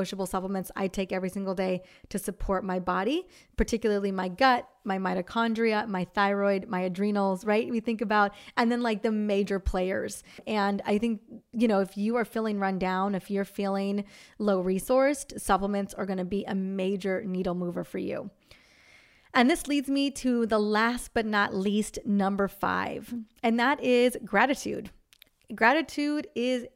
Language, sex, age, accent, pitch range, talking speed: English, female, 30-49, American, 195-230 Hz, 165 wpm